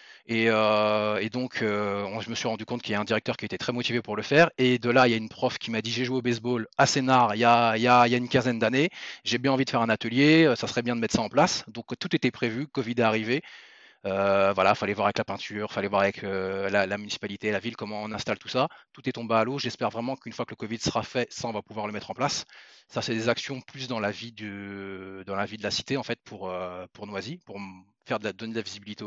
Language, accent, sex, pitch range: French, French, male, 105-120 Hz